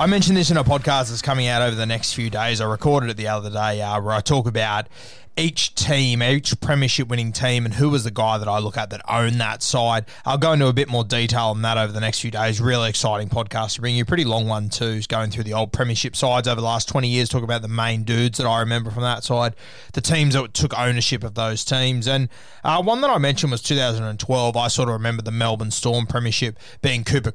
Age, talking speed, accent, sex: 20-39, 255 wpm, Australian, male